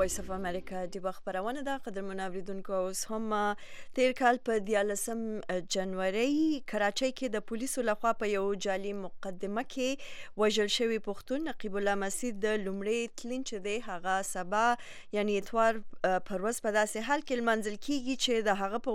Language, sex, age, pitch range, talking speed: English, female, 20-39, 190-235 Hz, 160 wpm